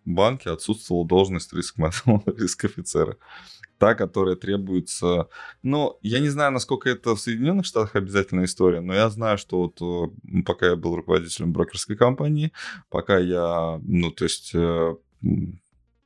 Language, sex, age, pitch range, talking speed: Russian, male, 20-39, 85-105 Hz, 135 wpm